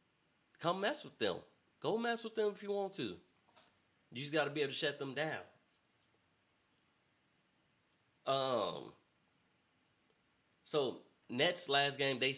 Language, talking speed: English, 135 wpm